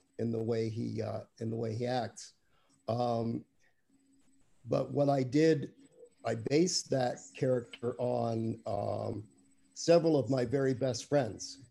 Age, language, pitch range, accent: 50-69, English, 115-135 Hz, American